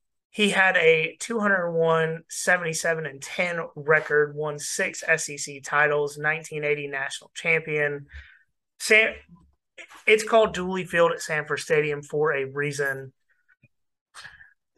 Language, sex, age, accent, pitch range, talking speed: English, male, 30-49, American, 145-175 Hz, 110 wpm